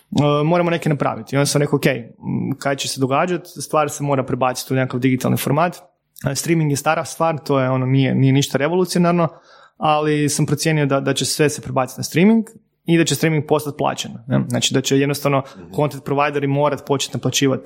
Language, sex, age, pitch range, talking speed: Croatian, male, 30-49, 135-155 Hz, 190 wpm